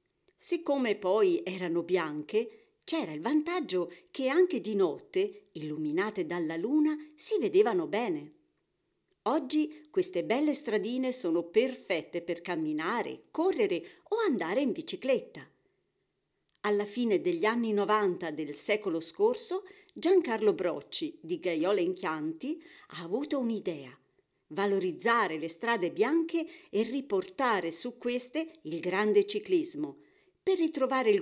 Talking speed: 115 wpm